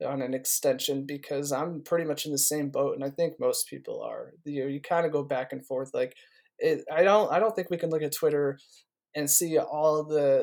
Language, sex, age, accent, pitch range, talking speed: English, male, 20-39, American, 140-160 Hz, 245 wpm